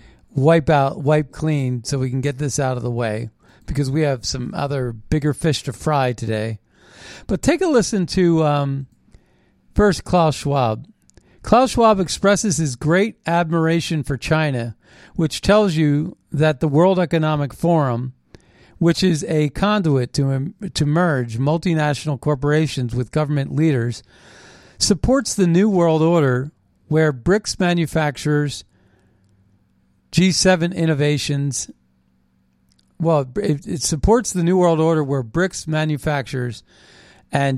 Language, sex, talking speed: English, male, 130 wpm